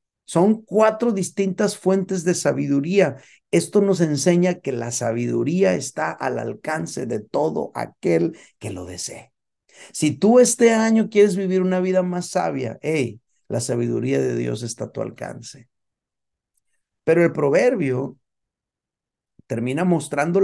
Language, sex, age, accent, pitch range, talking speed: Spanish, male, 50-69, Mexican, 115-175 Hz, 130 wpm